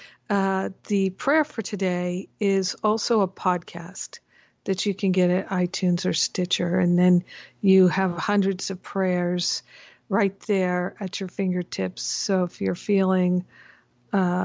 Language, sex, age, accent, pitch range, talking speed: English, female, 50-69, American, 180-205 Hz, 140 wpm